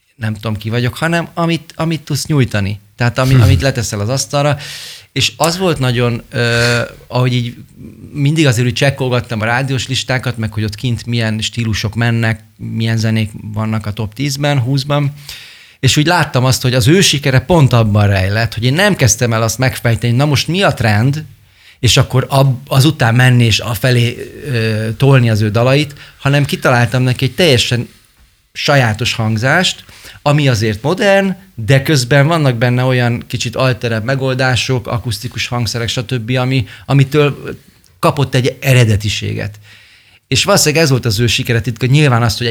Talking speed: 160 wpm